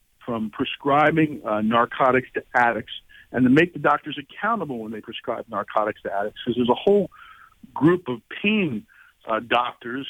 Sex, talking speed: male, 160 wpm